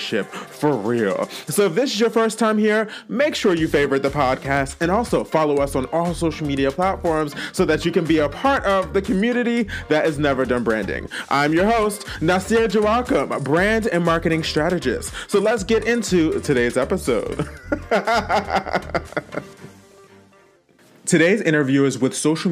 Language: English